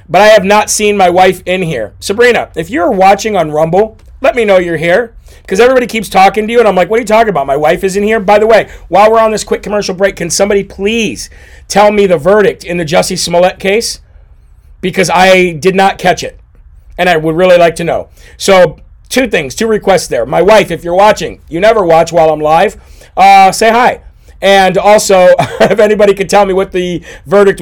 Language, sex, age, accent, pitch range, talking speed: English, male, 40-59, American, 160-210 Hz, 225 wpm